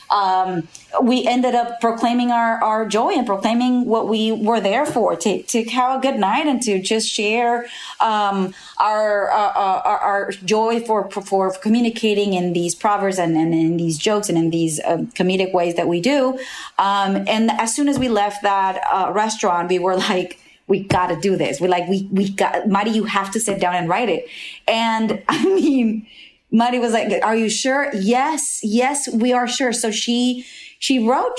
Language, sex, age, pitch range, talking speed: English, female, 30-49, 190-240 Hz, 195 wpm